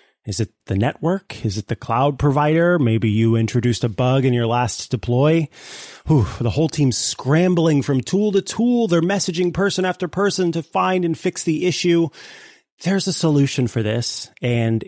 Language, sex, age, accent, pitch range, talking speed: English, male, 30-49, American, 115-155 Hz, 175 wpm